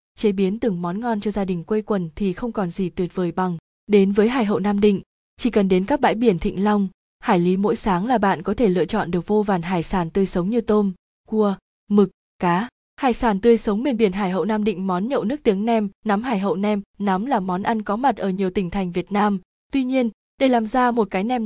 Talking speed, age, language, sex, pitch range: 255 wpm, 20-39, Vietnamese, female, 190-225 Hz